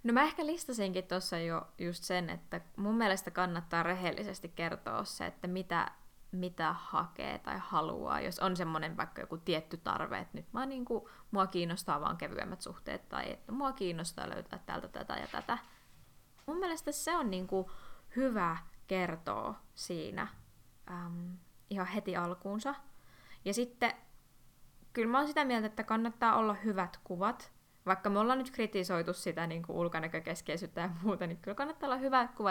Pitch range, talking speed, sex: 175-220 Hz, 160 wpm, female